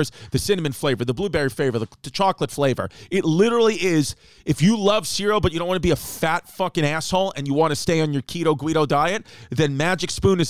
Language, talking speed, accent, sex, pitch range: English, 225 wpm, American, male, 150-195 Hz